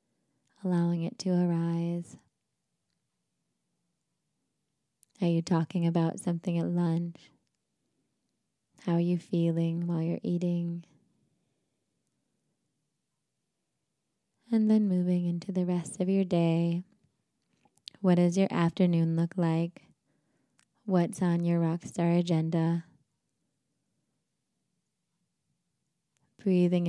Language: English